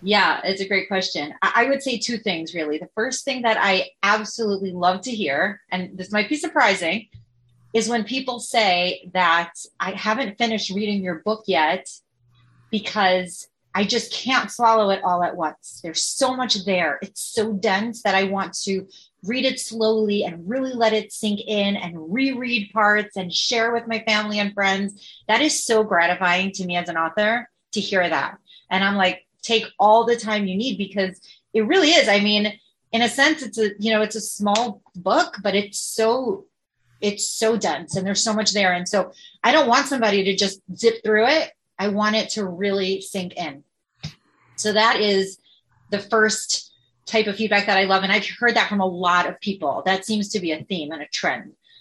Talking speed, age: 200 wpm, 30-49